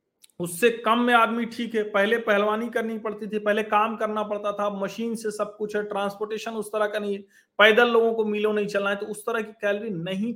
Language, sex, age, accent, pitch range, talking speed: Hindi, male, 40-59, native, 130-215 Hz, 230 wpm